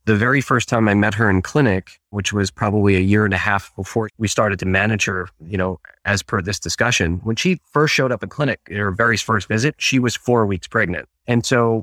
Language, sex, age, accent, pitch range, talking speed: English, male, 30-49, American, 100-120 Hz, 240 wpm